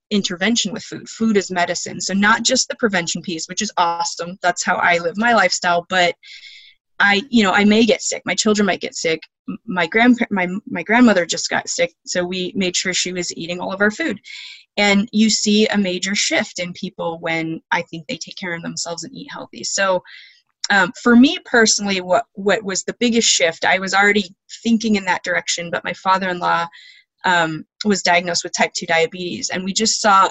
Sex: female